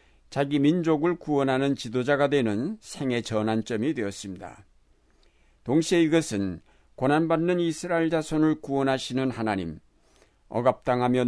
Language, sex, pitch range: Korean, male, 115-150 Hz